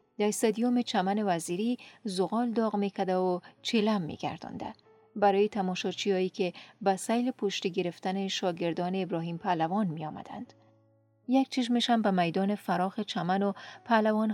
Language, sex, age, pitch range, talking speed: Persian, female, 30-49, 185-225 Hz, 125 wpm